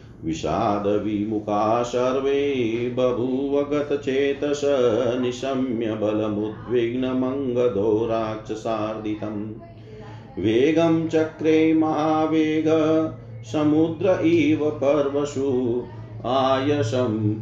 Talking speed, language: 60 wpm, Hindi